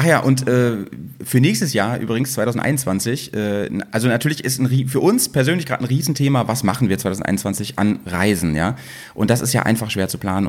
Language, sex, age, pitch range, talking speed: German, male, 30-49, 100-130 Hz, 195 wpm